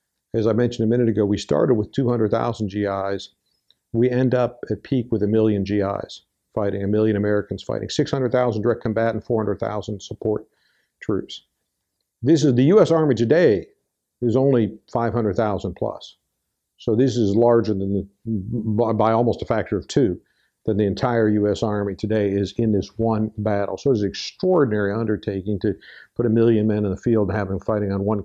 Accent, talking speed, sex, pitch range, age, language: American, 170 wpm, male, 100-120 Hz, 50-69, English